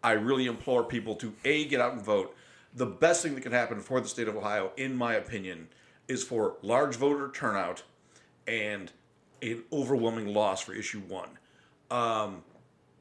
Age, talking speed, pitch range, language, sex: 50-69, 170 wpm, 120-150 Hz, English, male